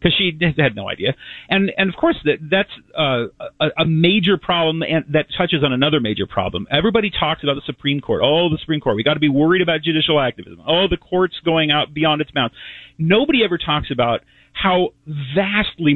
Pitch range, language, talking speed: 140-185 Hz, English, 205 wpm